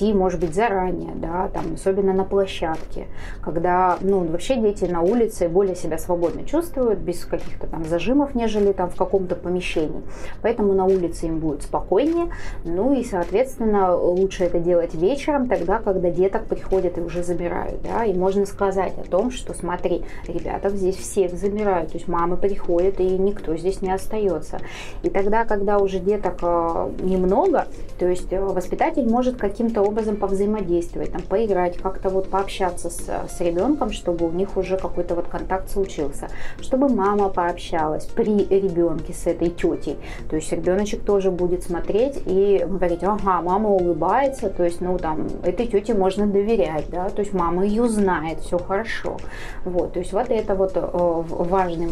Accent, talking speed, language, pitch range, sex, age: native, 160 wpm, Russian, 175-200 Hz, female, 20-39